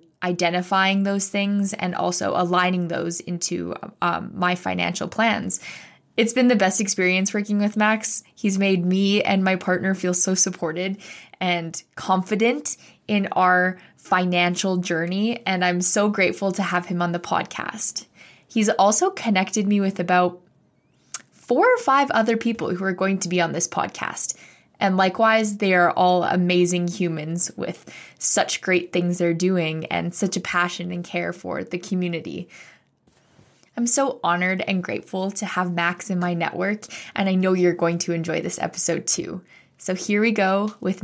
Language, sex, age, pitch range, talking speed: English, female, 20-39, 180-205 Hz, 165 wpm